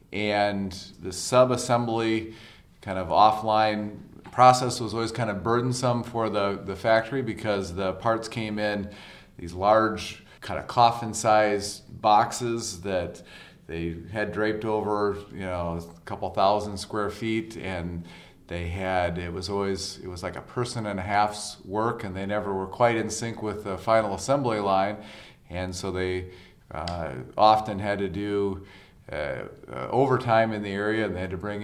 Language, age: English, 40-59